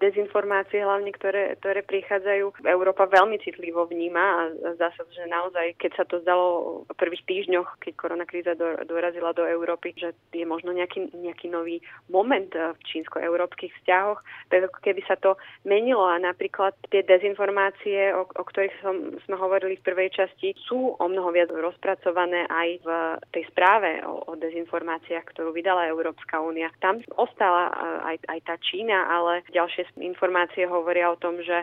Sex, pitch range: female, 170-190 Hz